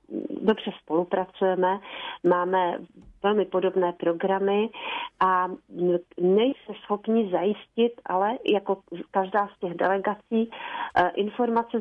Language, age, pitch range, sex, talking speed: Slovak, 40-59, 185-225 Hz, female, 85 wpm